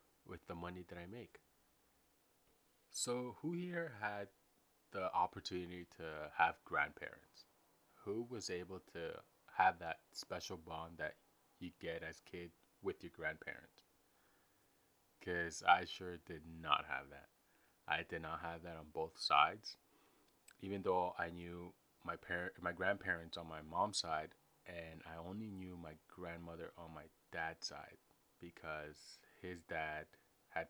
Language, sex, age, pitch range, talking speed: English, male, 30-49, 80-95 Hz, 145 wpm